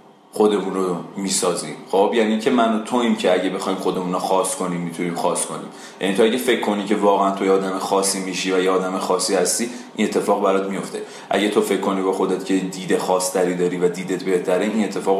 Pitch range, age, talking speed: 95-160 Hz, 30-49, 220 wpm